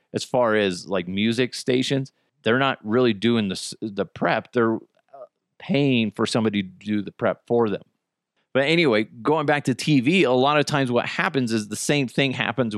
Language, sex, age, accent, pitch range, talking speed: English, male, 30-49, American, 110-150 Hz, 190 wpm